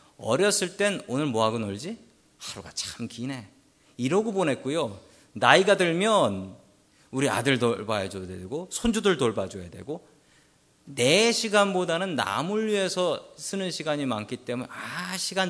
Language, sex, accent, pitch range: Korean, male, native, 130-215 Hz